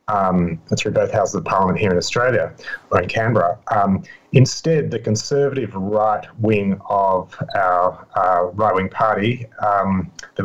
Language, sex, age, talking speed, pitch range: English, male, 30-49, 150 wpm, 105-130 Hz